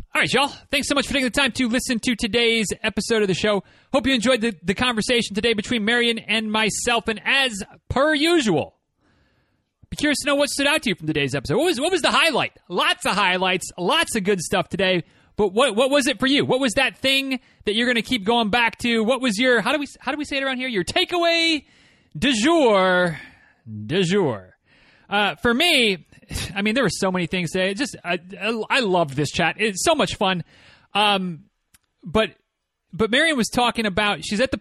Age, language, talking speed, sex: 30-49, English, 225 wpm, male